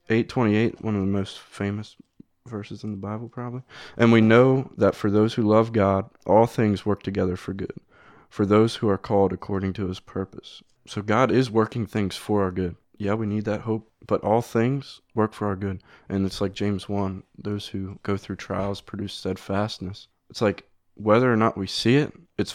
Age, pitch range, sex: 20-39, 95-115 Hz, male